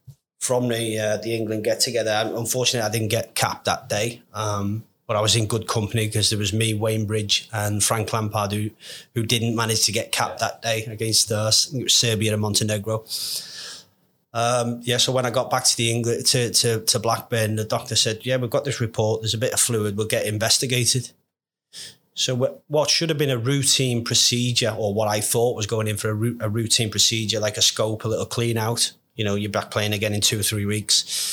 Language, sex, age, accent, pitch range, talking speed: English, male, 30-49, British, 110-120 Hz, 215 wpm